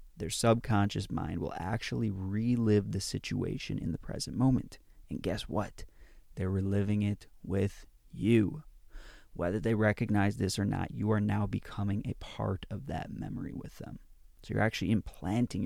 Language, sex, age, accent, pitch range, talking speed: English, male, 30-49, American, 95-115 Hz, 155 wpm